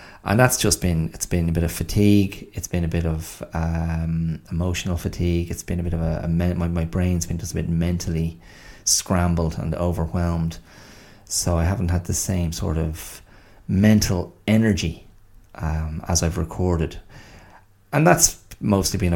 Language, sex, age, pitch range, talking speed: English, male, 30-49, 85-100 Hz, 170 wpm